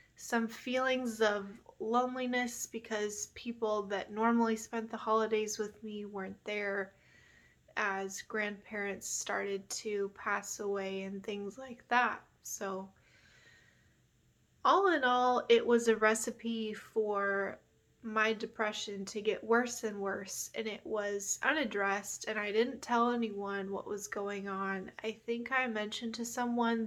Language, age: English, 20-39